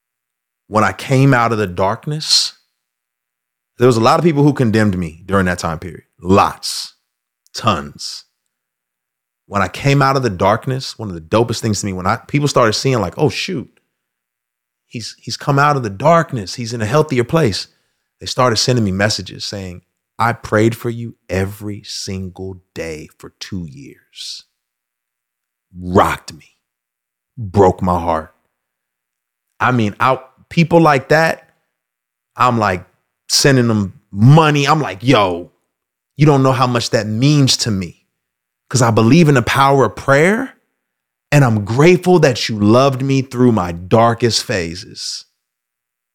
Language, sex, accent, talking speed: English, male, American, 155 wpm